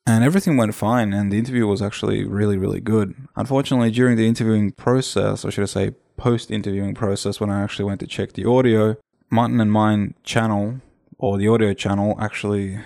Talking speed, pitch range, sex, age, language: 185 wpm, 100-115 Hz, male, 10-29, English